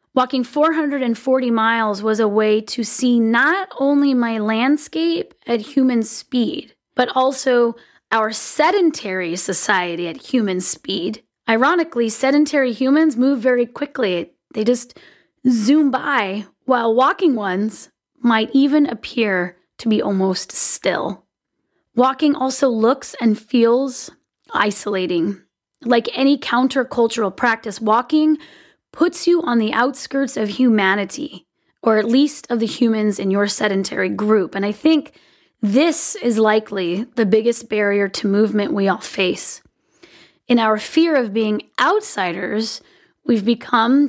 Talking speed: 125 wpm